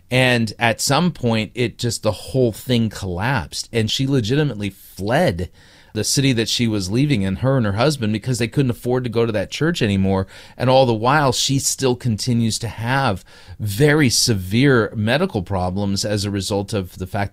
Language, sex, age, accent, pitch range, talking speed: English, male, 40-59, American, 100-125 Hz, 185 wpm